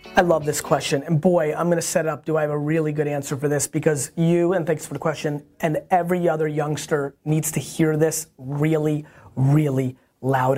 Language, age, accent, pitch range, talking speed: English, 30-49, American, 140-180 Hz, 220 wpm